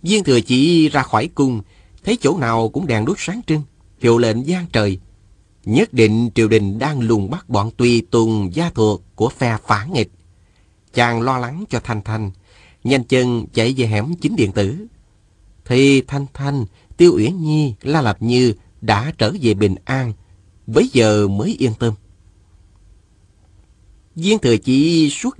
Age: 30-49